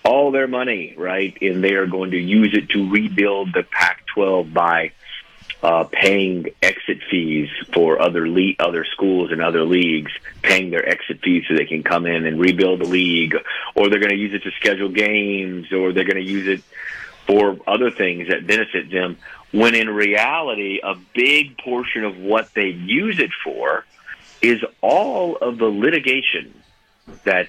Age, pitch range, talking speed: 40-59, 85-100 Hz, 170 wpm